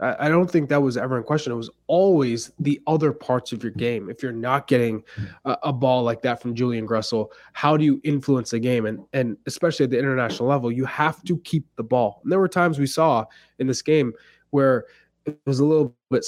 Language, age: English, 20-39